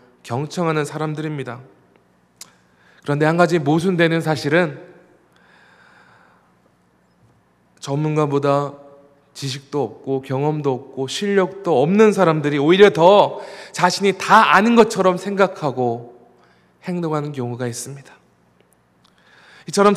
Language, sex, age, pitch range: Korean, male, 20-39, 120-185 Hz